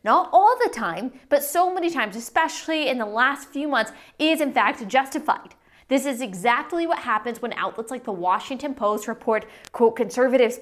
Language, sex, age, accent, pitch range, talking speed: English, female, 20-39, American, 230-295 Hz, 180 wpm